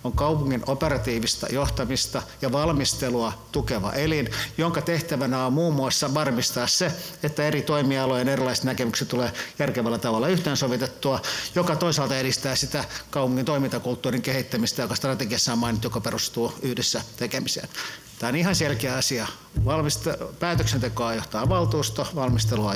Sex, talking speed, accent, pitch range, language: male, 130 wpm, native, 120-150 Hz, Finnish